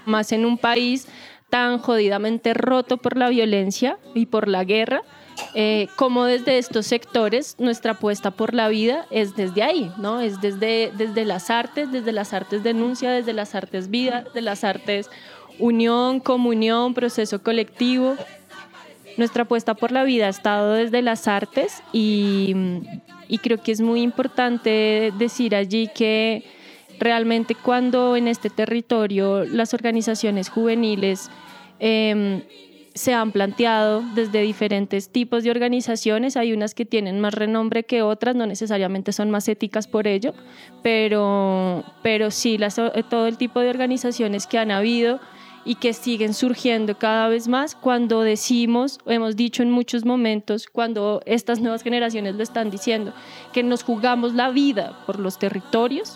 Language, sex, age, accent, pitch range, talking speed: Spanish, female, 20-39, Colombian, 215-245 Hz, 150 wpm